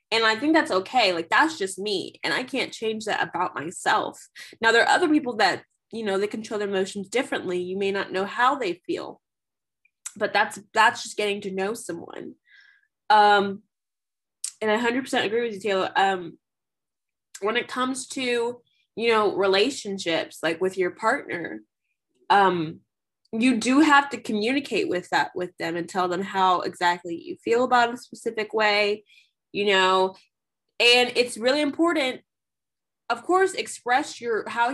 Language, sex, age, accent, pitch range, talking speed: English, female, 20-39, American, 195-260 Hz, 165 wpm